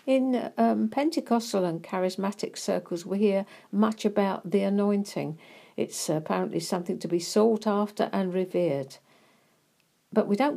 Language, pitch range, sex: English, 165-210 Hz, female